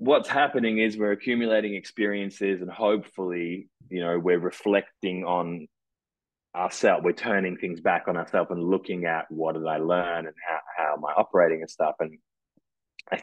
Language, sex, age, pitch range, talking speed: English, male, 20-39, 85-105 Hz, 170 wpm